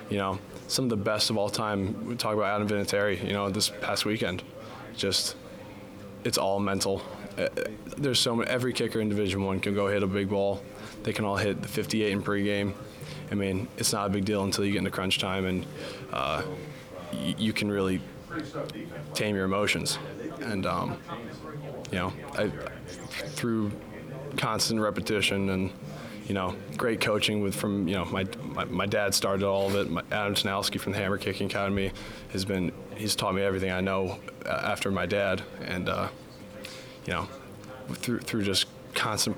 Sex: male